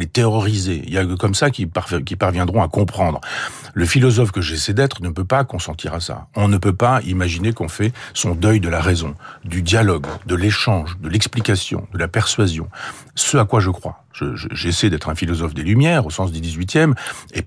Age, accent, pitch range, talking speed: 40-59, French, 90-120 Hz, 210 wpm